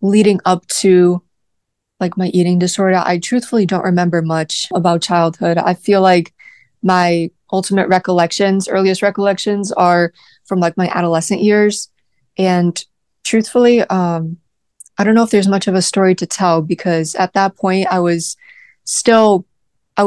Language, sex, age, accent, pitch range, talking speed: English, female, 20-39, American, 170-190 Hz, 150 wpm